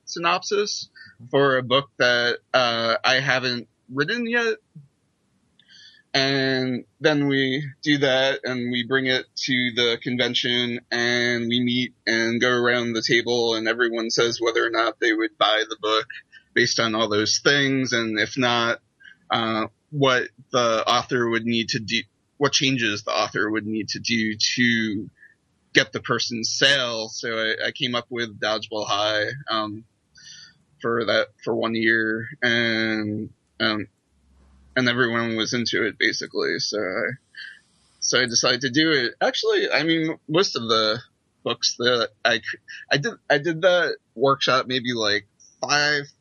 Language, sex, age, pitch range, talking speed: English, male, 20-39, 110-135 Hz, 155 wpm